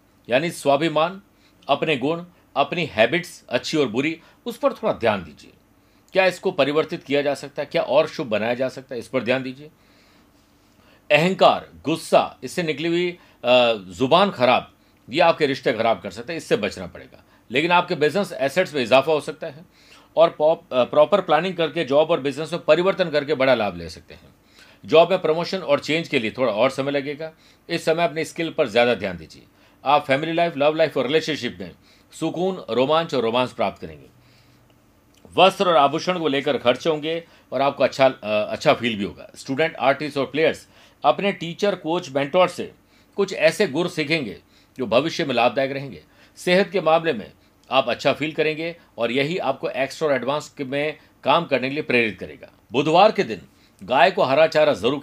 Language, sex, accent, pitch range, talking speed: Hindi, male, native, 130-170 Hz, 180 wpm